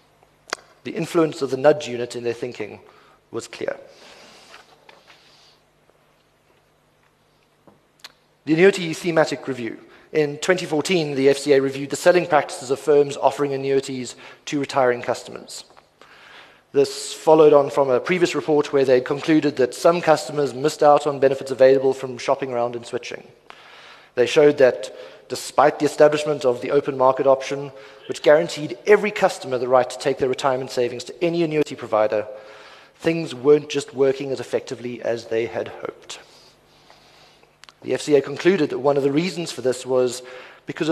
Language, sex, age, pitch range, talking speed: English, male, 30-49, 125-155 Hz, 150 wpm